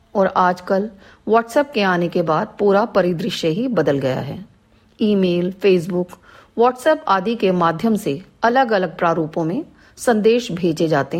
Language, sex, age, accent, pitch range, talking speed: Hindi, female, 40-59, native, 175-235 Hz, 150 wpm